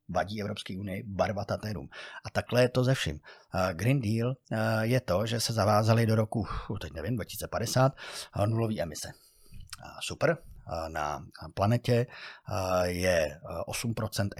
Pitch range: 95-125 Hz